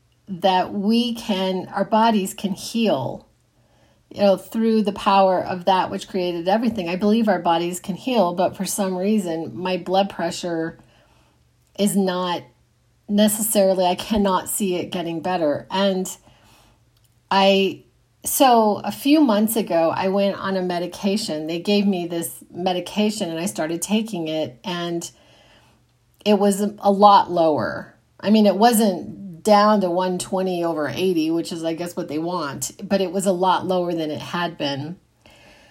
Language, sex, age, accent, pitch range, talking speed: English, female, 40-59, American, 170-205 Hz, 155 wpm